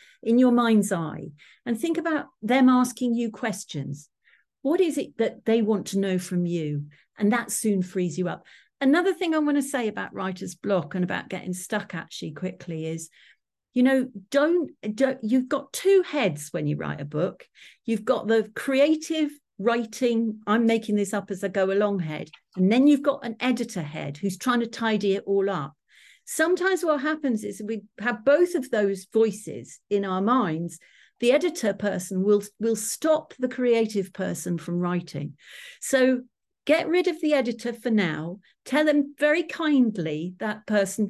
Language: English